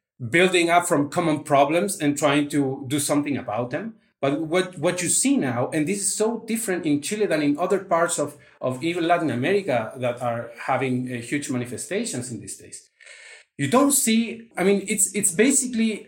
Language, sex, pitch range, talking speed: English, male, 150-200 Hz, 190 wpm